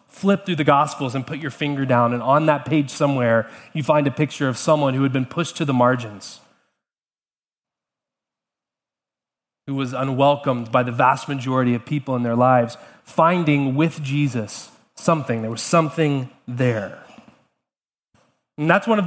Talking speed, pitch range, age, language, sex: 160 wpm, 135-175 Hz, 20-39, English, male